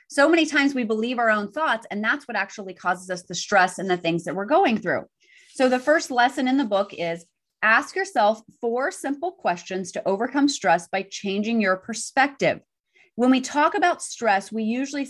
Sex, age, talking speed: female, 30-49, 200 wpm